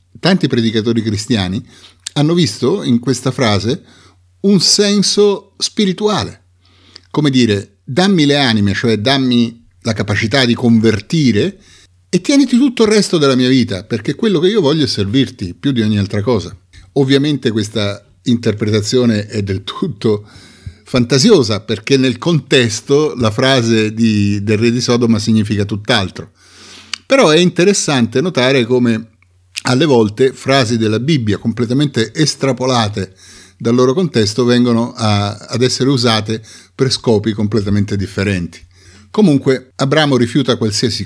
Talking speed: 130 wpm